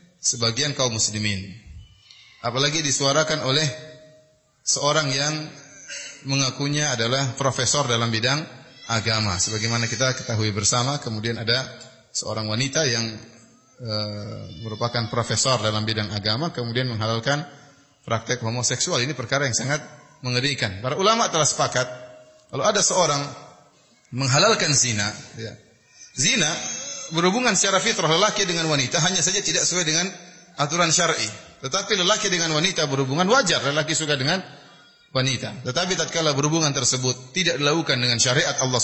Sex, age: male, 30-49